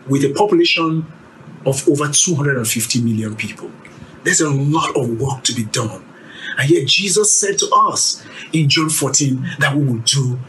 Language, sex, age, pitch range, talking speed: English, male, 50-69, 140-220 Hz, 165 wpm